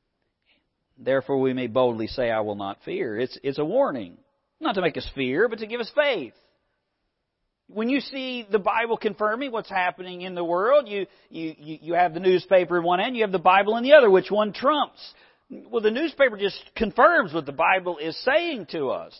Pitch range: 140-220 Hz